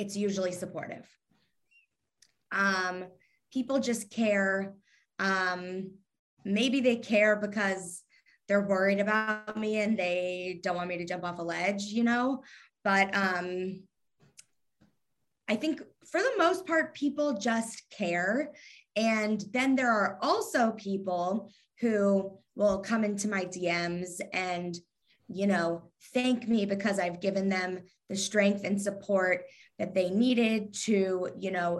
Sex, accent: female, American